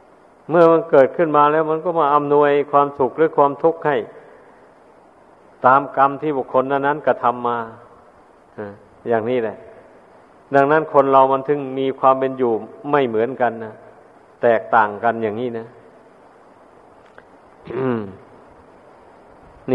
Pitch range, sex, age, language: 125-150 Hz, male, 50-69, Thai